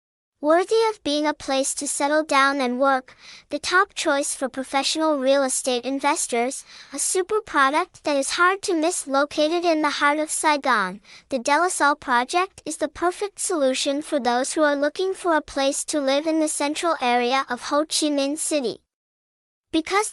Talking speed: 175 wpm